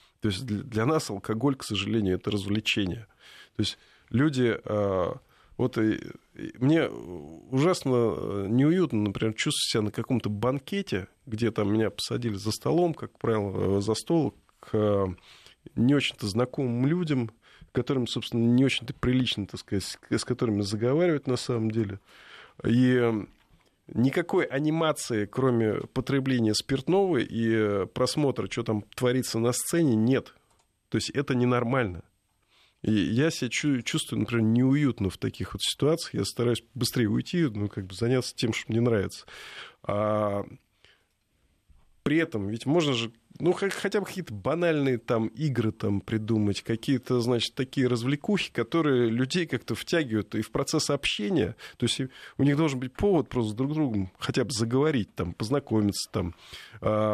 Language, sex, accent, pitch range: Russian, male, native, 105-140 Hz